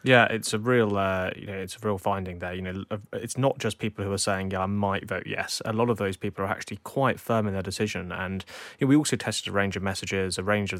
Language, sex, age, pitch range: English, male, 20-39, 100-115 Hz